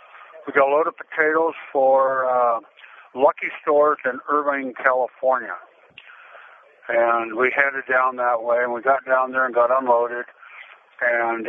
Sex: male